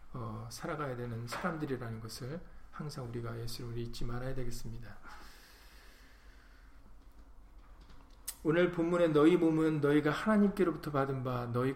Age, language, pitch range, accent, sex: 40-59, Korean, 120-155 Hz, native, male